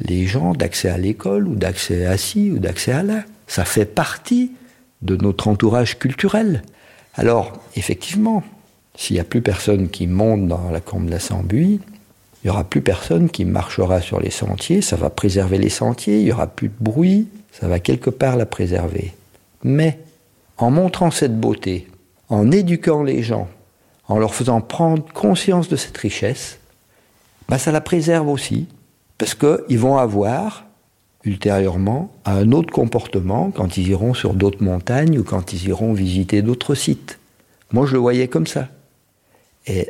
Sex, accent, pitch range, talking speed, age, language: male, French, 95-135 Hz, 170 wpm, 50-69, French